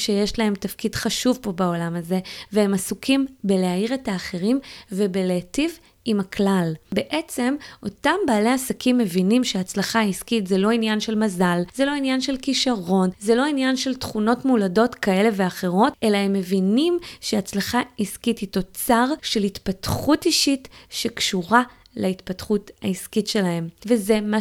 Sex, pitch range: female, 200-250 Hz